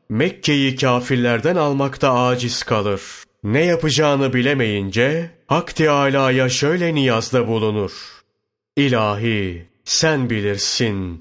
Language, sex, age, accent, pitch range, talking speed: Turkish, male, 30-49, native, 110-140 Hz, 85 wpm